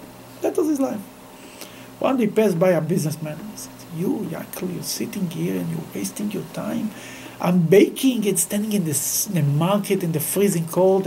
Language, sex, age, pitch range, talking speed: English, male, 60-79, 175-275 Hz, 190 wpm